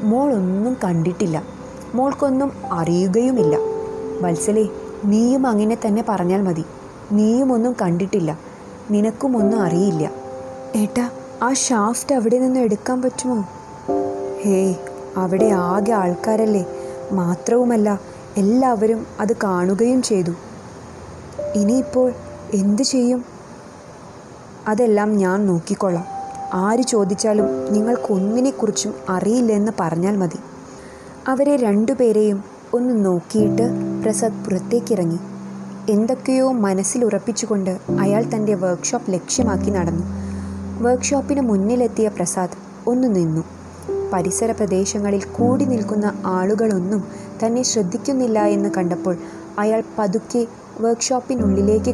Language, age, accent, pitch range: Malayalam, 20-39, native, 185-240 Hz